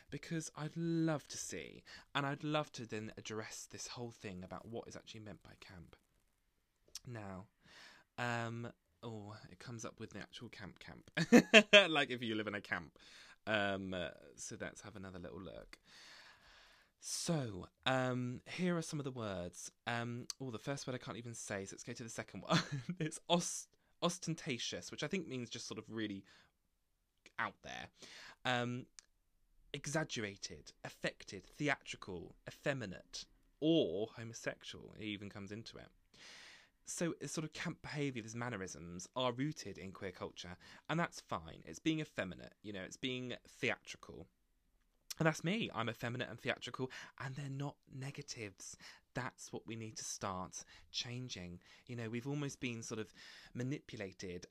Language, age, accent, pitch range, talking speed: English, 20-39, British, 100-140 Hz, 155 wpm